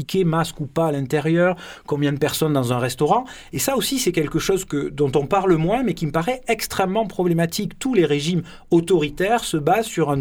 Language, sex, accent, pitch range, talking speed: French, male, French, 140-185 Hz, 210 wpm